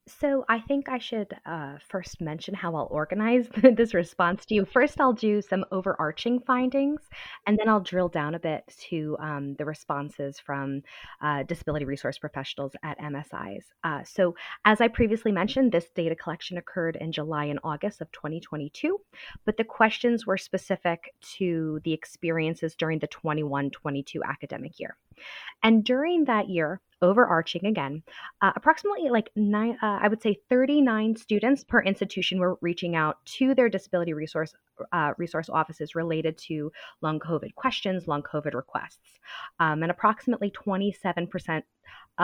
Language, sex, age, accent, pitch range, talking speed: English, female, 20-39, American, 150-215 Hz, 155 wpm